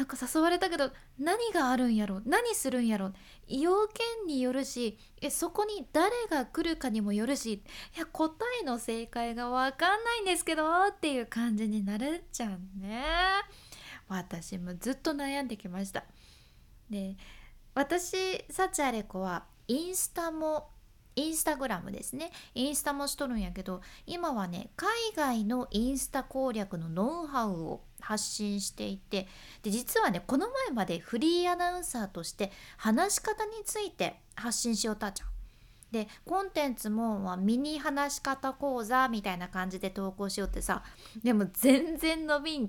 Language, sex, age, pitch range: Japanese, female, 20-39, 215-320 Hz